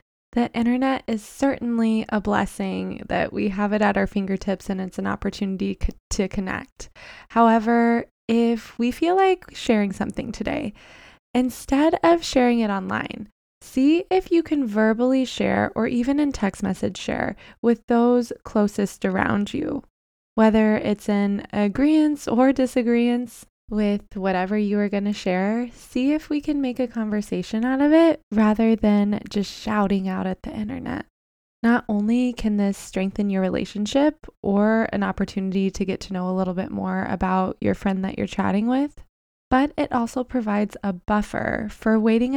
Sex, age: female, 20-39